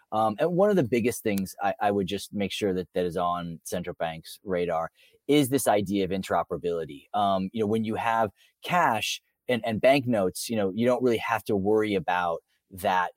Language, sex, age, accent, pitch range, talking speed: English, male, 30-49, American, 95-120 Hz, 205 wpm